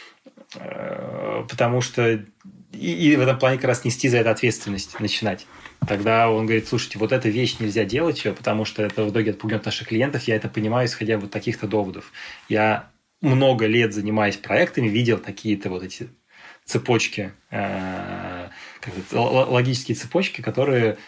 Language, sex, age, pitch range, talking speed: Russian, male, 20-39, 105-125 Hz, 160 wpm